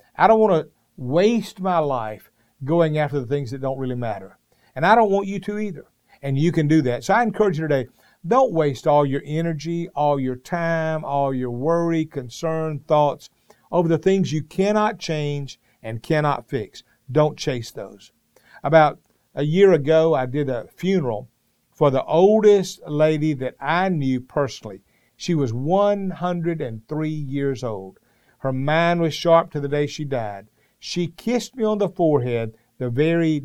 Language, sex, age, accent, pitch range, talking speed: English, male, 50-69, American, 130-175 Hz, 170 wpm